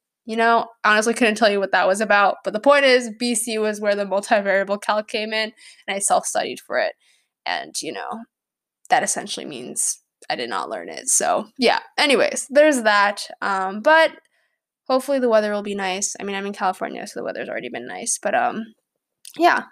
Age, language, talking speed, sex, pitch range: 10-29, English, 200 wpm, female, 205-275 Hz